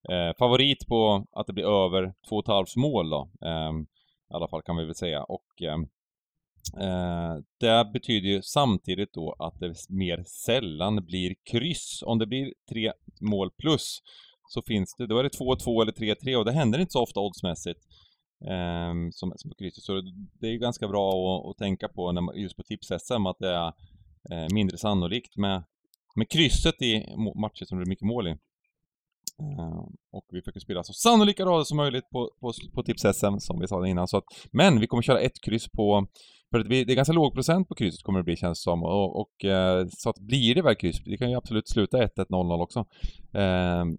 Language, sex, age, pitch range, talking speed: Swedish, male, 30-49, 90-120 Hz, 210 wpm